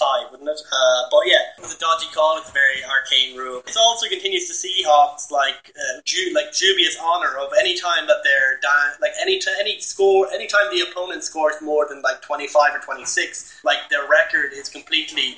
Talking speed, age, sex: 210 wpm, 20-39, male